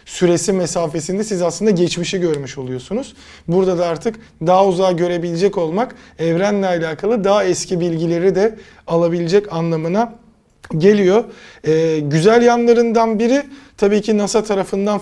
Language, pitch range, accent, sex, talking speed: Turkish, 160-205 Hz, native, male, 125 wpm